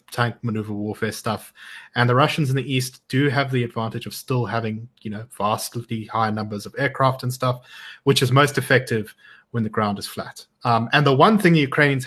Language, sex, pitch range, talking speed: English, male, 110-140 Hz, 210 wpm